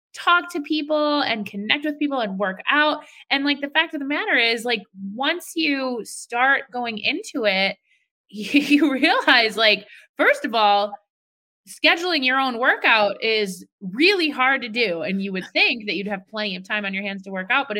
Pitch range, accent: 200-255 Hz, American